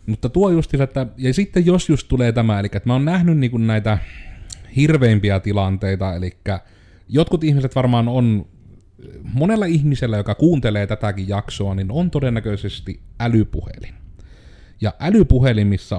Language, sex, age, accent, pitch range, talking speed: Finnish, male, 30-49, native, 95-120 Hz, 135 wpm